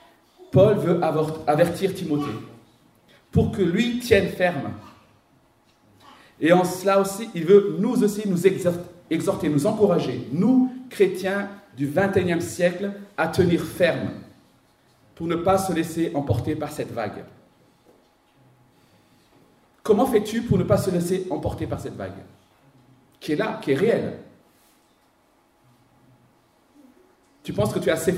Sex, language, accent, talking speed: male, French, French, 130 wpm